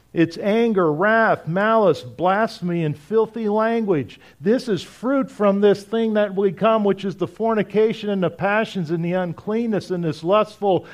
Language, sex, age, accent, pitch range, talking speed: English, male, 50-69, American, 165-210 Hz, 165 wpm